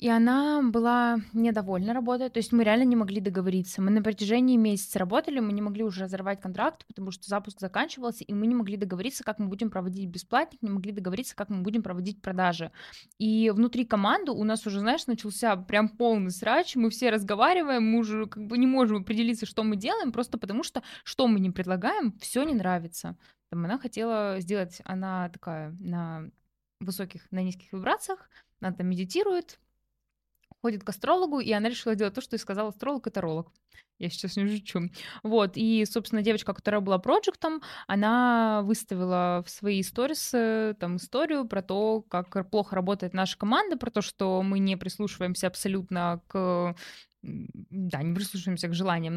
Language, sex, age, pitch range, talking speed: Russian, female, 20-39, 190-235 Hz, 175 wpm